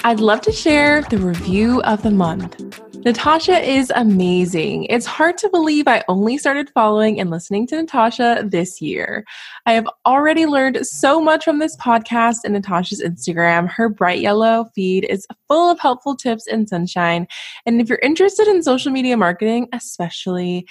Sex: female